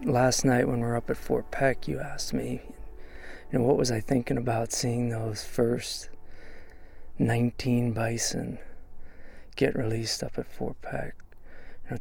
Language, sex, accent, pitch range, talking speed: English, male, American, 90-120 Hz, 160 wpm